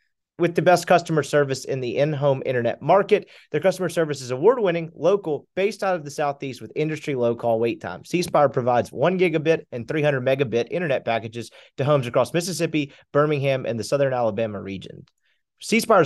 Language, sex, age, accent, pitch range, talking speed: English, male, 30-49, American, 135-185 Hz, 180 wpm